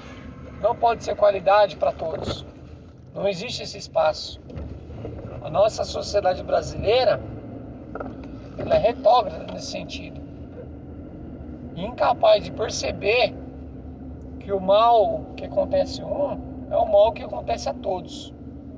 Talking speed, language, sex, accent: 110 wpm, Portuguese, male, Brazilian